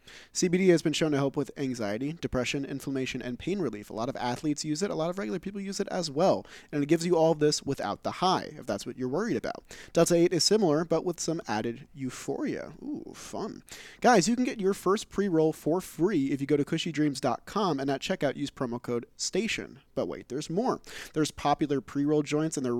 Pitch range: 130-170 Hz